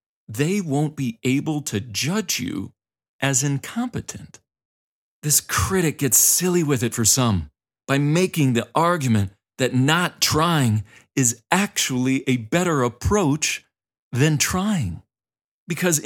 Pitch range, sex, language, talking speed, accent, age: 110-150 Hz, male, English, 120 wpm, American, 40-59